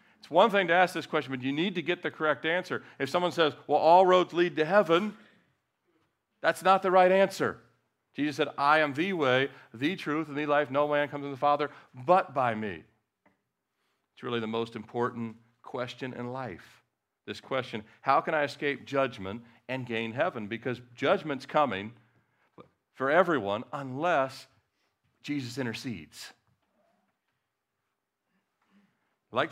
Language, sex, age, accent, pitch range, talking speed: English, male, 50-69, American, 125-165 Hz, 155 wpm